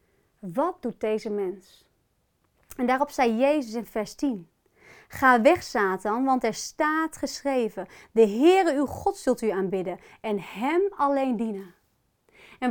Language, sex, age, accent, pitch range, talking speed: Dutch, female, 30-49, Dutch, 220-305 Hz, 140 wpm